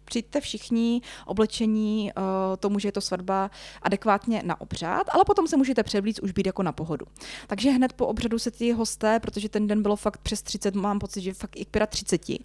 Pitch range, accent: 190-220 Hz, native